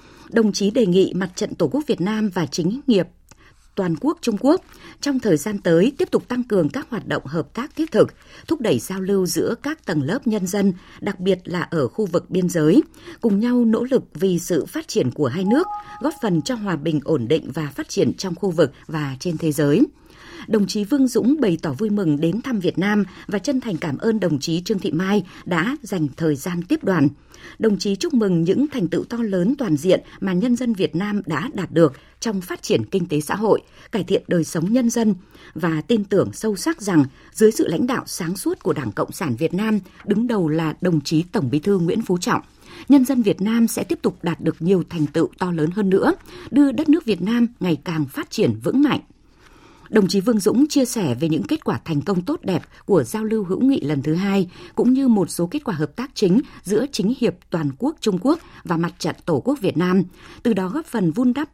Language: Vietnamese